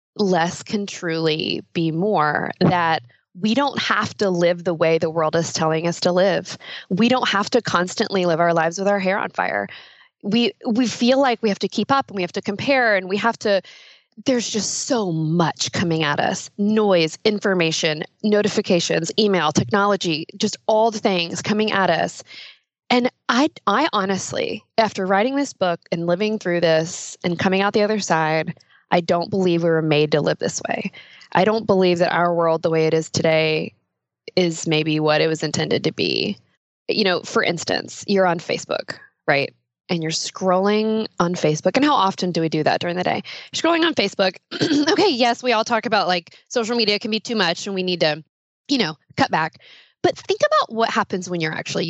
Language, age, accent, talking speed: English, 20-39, American, 200 wpm